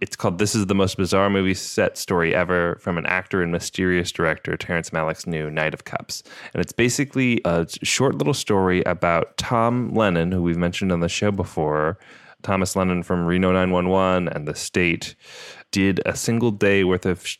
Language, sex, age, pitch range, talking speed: English, male, 20-39, 85-100 Hz, 185 wpm